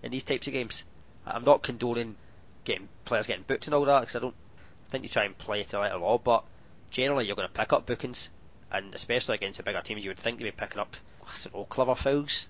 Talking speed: 260 wpm